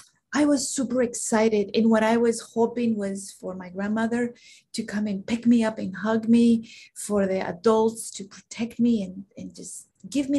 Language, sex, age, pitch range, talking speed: English, female, 30-49, 195-235 Hz, 190 wpm